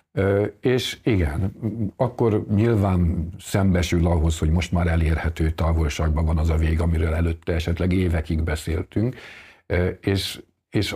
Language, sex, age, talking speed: Hungarian, male, 50-69, 120 wpm